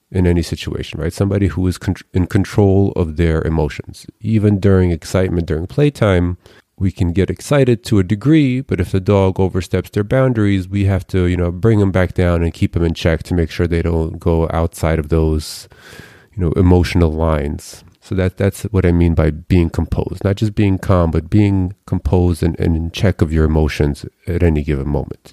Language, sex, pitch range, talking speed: English, male, 85-100 Hz, 205 wpm